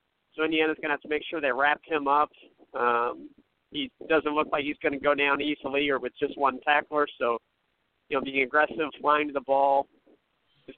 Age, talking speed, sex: 40-59, 210 wpm, male